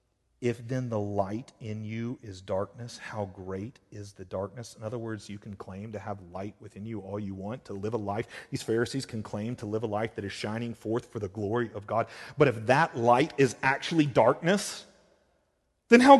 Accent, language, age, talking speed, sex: American, English, 40-59, 210 wpm, male